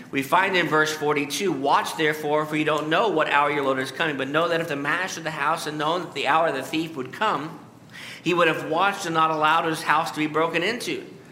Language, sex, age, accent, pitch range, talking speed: English, male, 50-69, American, 155-195 Hz, 260 wpm